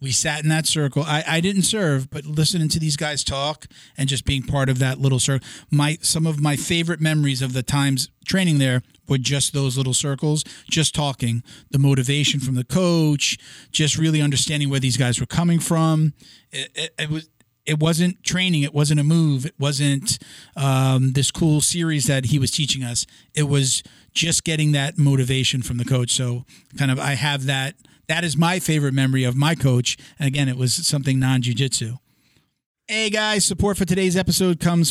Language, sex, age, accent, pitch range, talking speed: English, male, 40-59, American, 135-165 Hz, 195 wpm